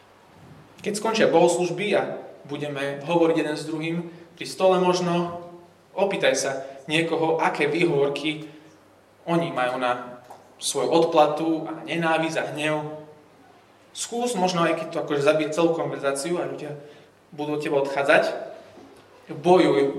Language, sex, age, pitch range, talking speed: Slovak, male, 20-39, 145-175 Hz, 125 wpm